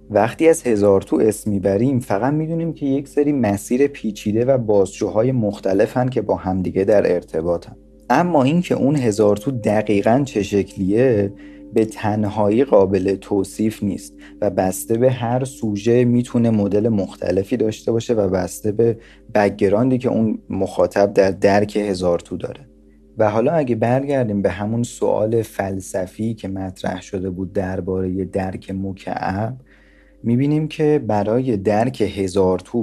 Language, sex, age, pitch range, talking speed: Persian, male, 40-59, 95-120 Hz, 135 wpm